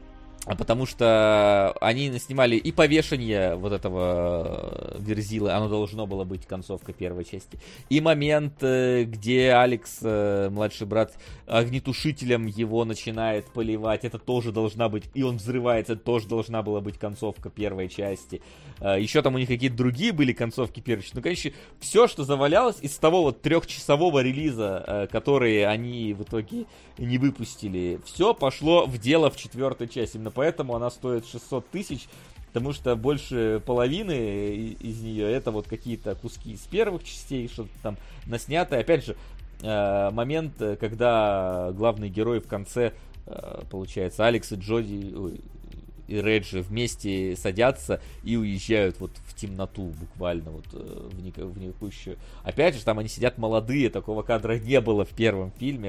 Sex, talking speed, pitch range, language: male, 145 wpm, 100-125 Hz, Russian